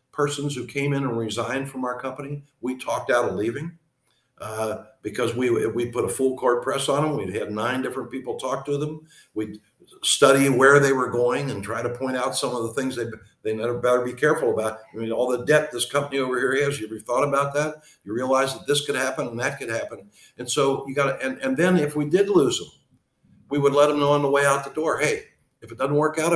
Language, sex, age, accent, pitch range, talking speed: English, male, 60-79, American, 125-150 Hz, 250 wpm